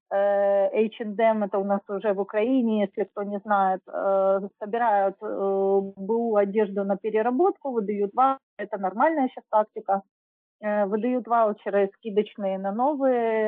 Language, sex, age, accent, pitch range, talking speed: Russian, female, 30-49, native, 195-235 Hz, 140 wpm